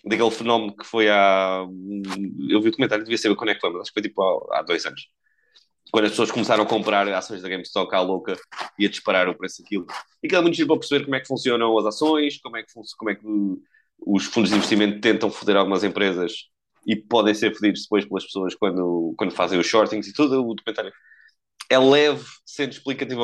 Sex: male